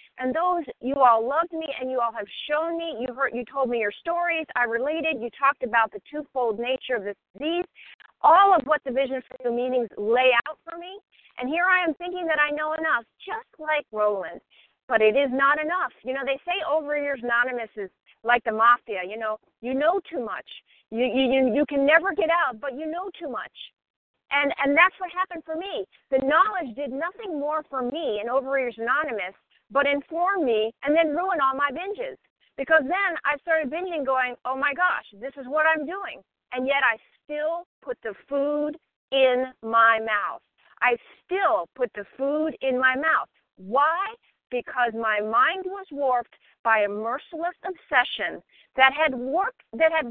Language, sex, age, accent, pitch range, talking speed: English, female, 50-69, American, 245-325 Hz, 190 wpm